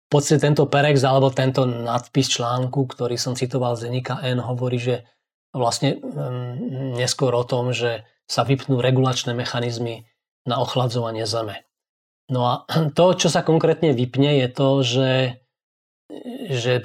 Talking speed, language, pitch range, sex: 140 wpm, English, 125-145 Hz, male